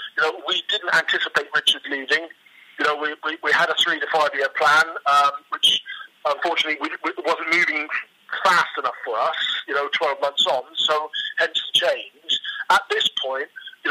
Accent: British